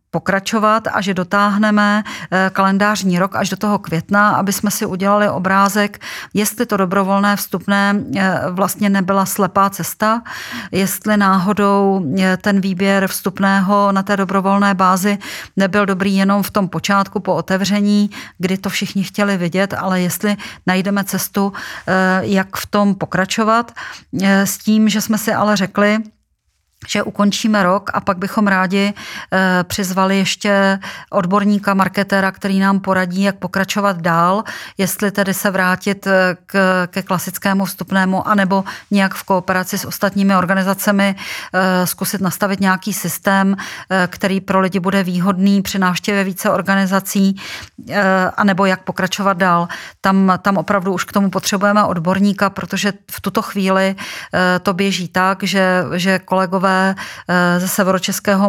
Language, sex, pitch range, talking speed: Czech, female, 185-200 Hz, 130 wpm